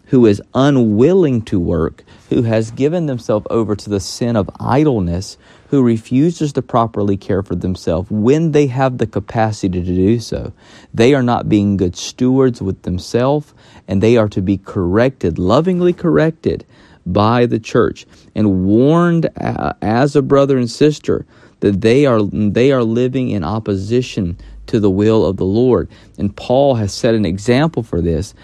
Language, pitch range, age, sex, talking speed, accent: English, 100-125 Hz, 40-59, male, 165 wpm, American